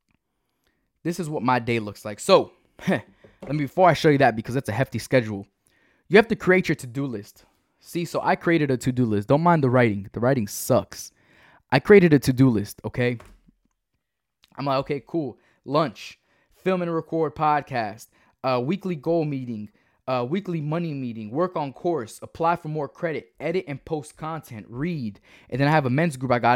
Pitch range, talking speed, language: 120-165 Hz, 195 wpm, English